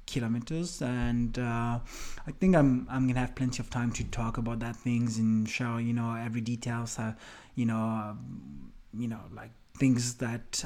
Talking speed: 185 wpm